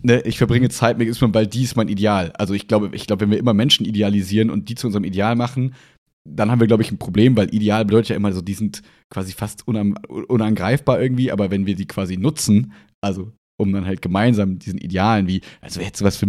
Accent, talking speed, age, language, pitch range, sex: German, 230 wpm, 30-49, German, 100-115 Hz, male